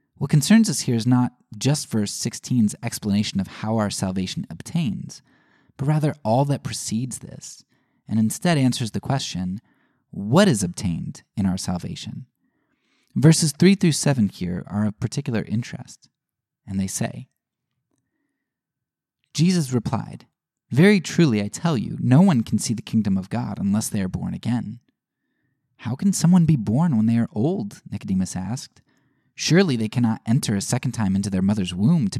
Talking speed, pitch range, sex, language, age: 160 wpm, 100-145 Hz, male, English, 20-39